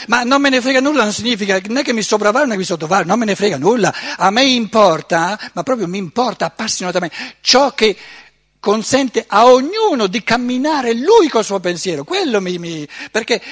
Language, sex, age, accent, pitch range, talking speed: Italian, male, 60-79, native, 175-240 Hz, 195 wpm